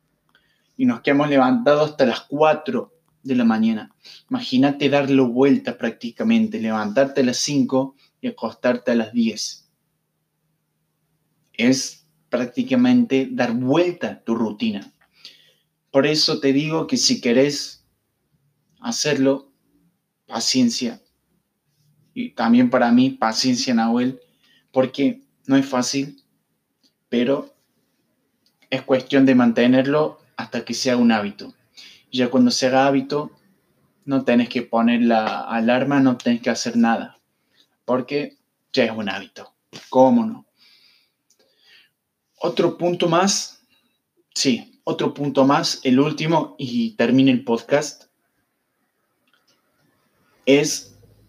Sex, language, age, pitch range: male, Spanish, 20-39, 125-175 Hz